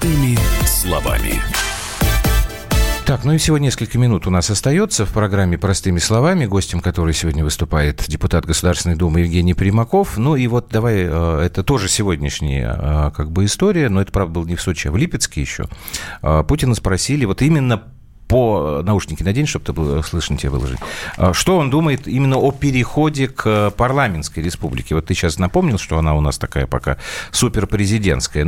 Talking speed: 160 wpm